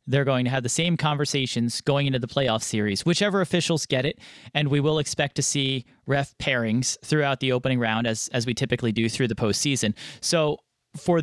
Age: 30-49